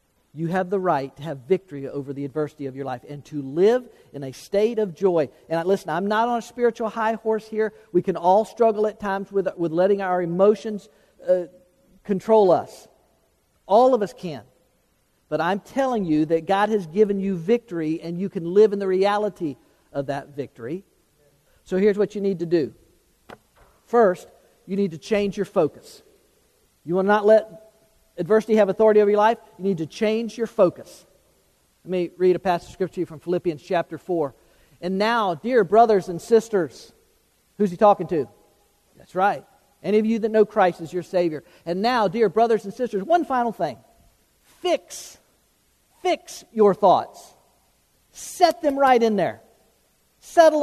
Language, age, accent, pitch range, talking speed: English, 50-69, American, 175-225 Hz, 180 wpm